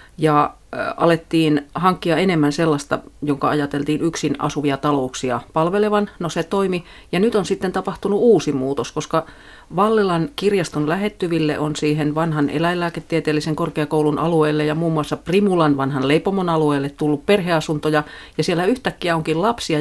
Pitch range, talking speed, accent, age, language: 145-175 Hz, 135 wpm, native, 40-59, Finnish